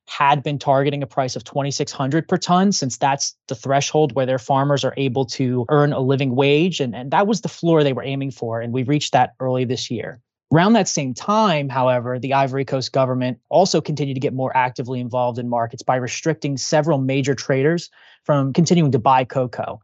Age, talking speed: 20-39, 205 wpm